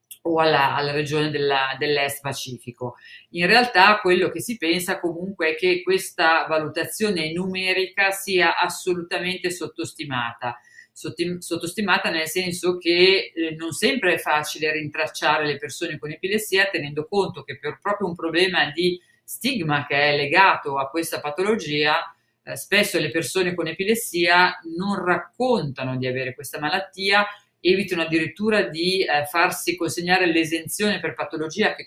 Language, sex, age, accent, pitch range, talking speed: Italian, female, 40-59, native, 150-180 Hz, 135 wpm